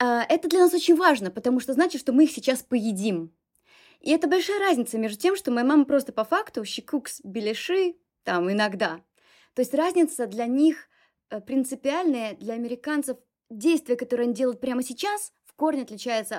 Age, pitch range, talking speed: 20-39, 205-280 Hz, 170 wpm